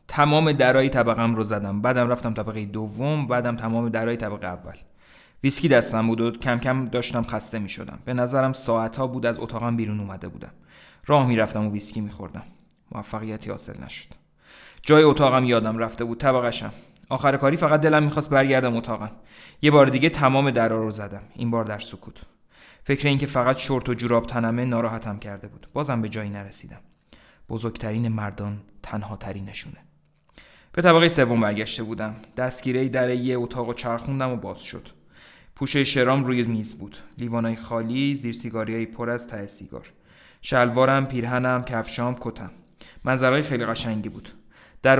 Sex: male